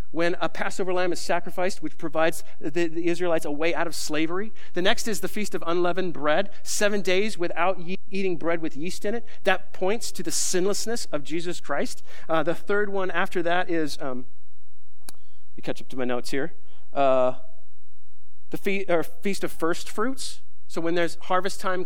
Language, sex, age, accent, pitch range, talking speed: English, male, 40-59, American, 140-185 Hz, 195 wpm